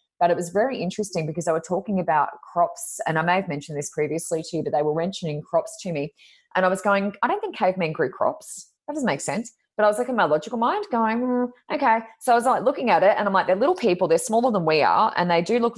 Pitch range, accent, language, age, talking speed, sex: 155-205 Hz, Australian, English, 20-39, 280 wpm, female